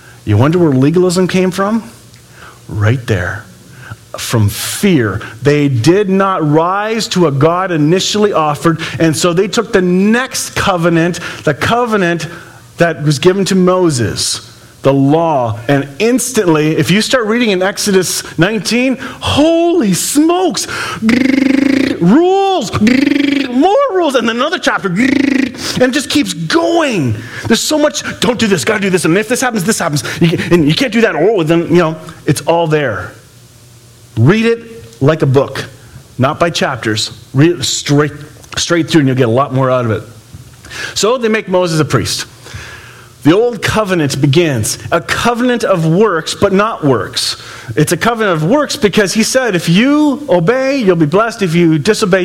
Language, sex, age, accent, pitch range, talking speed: English, male, 40-59, American, 140-225 Hz, 165 wpm